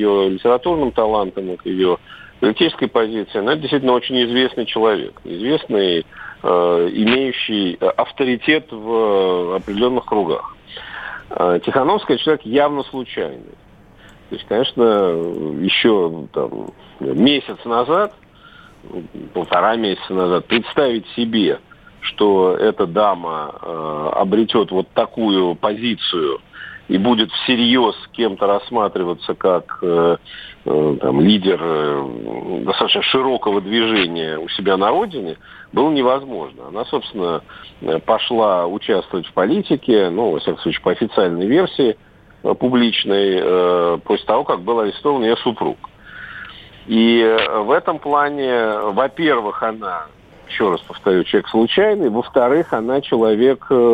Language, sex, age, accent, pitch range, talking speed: Russian, male, 50-69, native, 95-125 Hz, 100 wpm